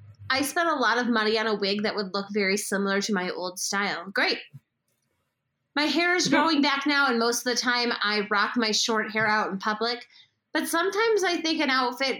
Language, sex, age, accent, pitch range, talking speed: English, female, 20-39, American, 200-260 Hz, 215 wpm